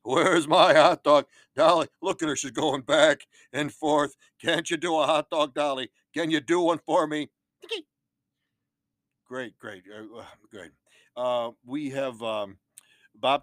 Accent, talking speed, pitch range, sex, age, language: American, 150 wpm, 110-150 Hz, male, 60-79, English